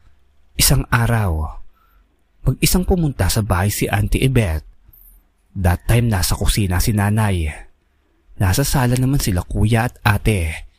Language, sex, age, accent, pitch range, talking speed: Filipino, male, 20-39, native, 80-115 Hz, 130 wpm